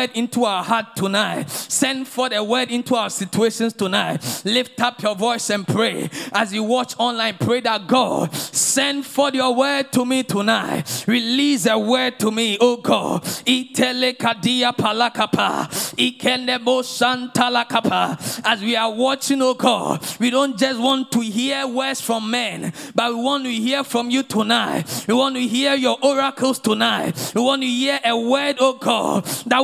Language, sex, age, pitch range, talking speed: English, male, 20-39, 235-265 Hz, 160 wpm